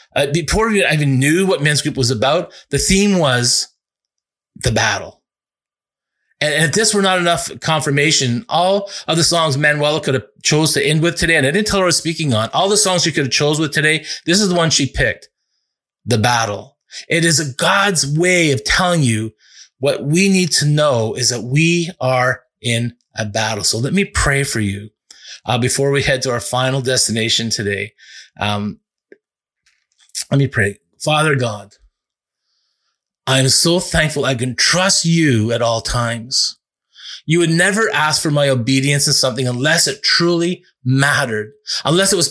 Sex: male